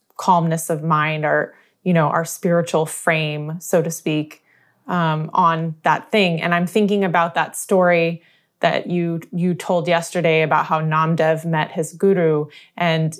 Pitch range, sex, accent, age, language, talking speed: 160-195 Hz, female, American, 20-39, English, 155 wpm